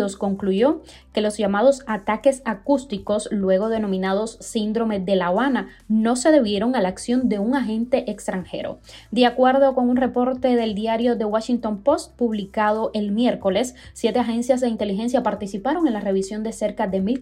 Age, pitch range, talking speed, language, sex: 20-39, 205-255 Hz, 165 wpm, Spanish, female